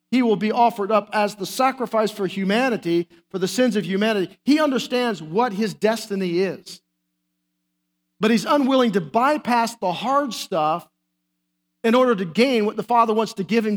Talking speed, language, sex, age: 175 wpm, English, male, 50-69